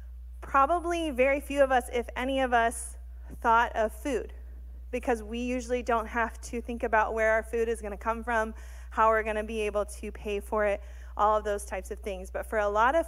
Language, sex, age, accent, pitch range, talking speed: English, female, 20-39, American, 205-240 Hz, 225 wpm